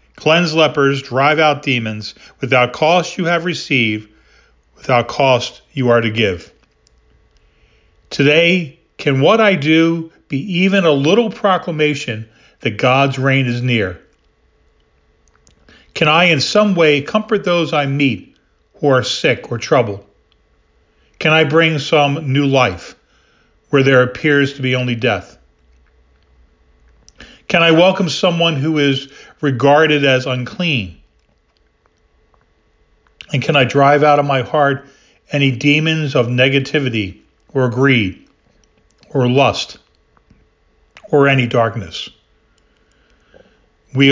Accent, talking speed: American, 120 wpm